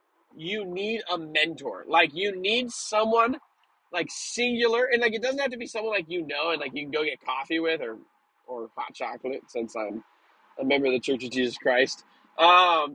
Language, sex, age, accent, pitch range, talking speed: English, male, 20-39, American, 140-210 Hz, 205 wpm